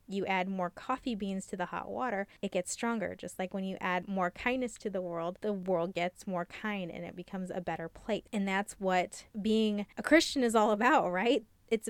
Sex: female